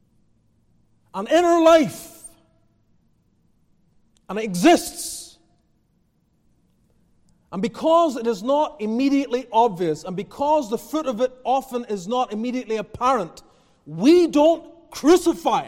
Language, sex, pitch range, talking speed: English, male, 175-255 Hz, 105 wpm